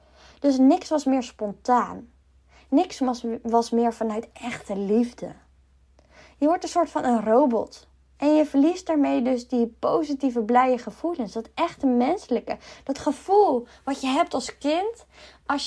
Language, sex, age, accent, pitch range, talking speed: Dutch, female, 20-39, Dutch, 225-285 Hz, 150 wpm